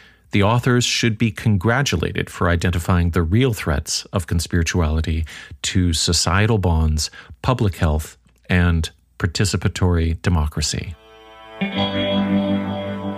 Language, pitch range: English, 85-105 Hz